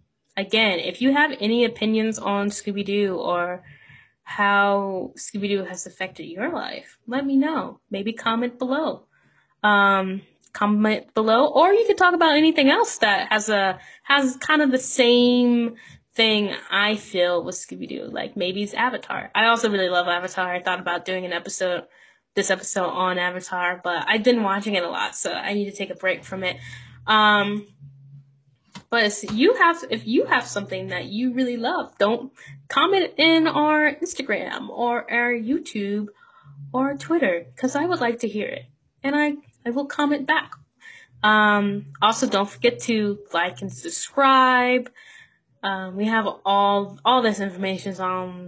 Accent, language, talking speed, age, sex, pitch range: American, English, 165 wpm, 10-29, female, 190-255 Hz